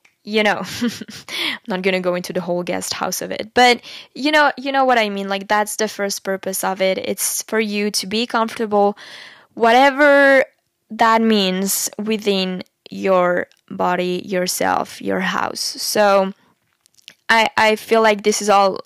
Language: English